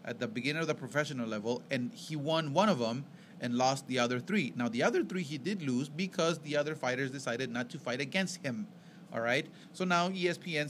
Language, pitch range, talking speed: English, 130-185 Hz, 225 wpm